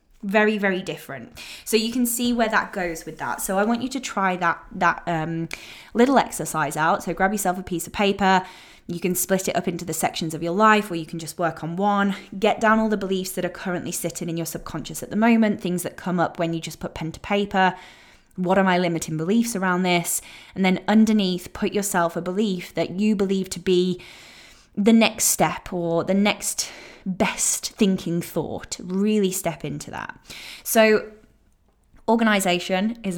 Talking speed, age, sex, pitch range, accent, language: 200 wpm, 10-29, female, 170-205 Hz, British, English